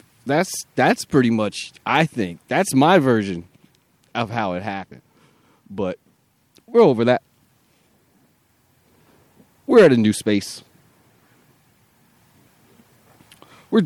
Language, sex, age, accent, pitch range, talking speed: English, male, 30-49, American, 105-140 Hz, 100 wpm